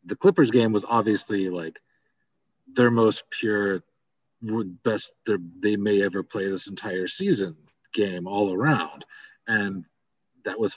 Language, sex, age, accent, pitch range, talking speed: English, male, 40-59, American, 95-130 Hz, 130 wpm